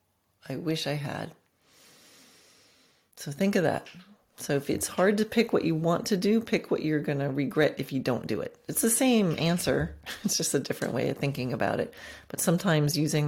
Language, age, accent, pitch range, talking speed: English, 30-49, American, 135-200 Hz, 210 wpm